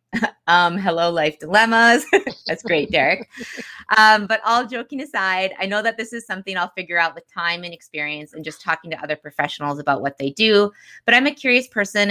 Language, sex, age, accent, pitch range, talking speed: English, female, 20-39, American, 155-200 Hz, 200 wpm